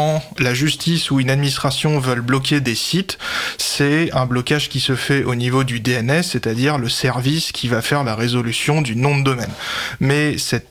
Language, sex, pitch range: French, male, 125-150 Hz